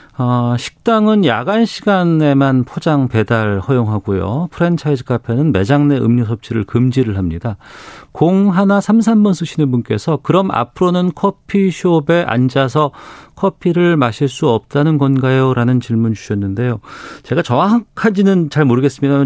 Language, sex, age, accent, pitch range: Korean, male, 40-59, native, 120-175 Hz